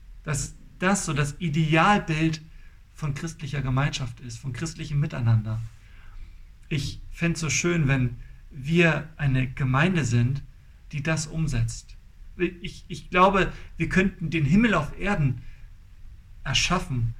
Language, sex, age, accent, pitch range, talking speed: German, male, 40-59, German, 135-170 Hz, 120 wpm